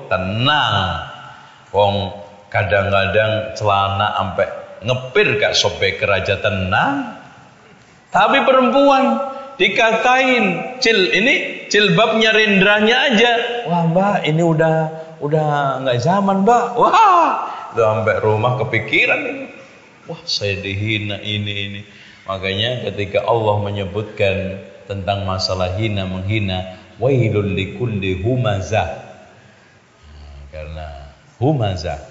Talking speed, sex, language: 95 wpm, male, Malay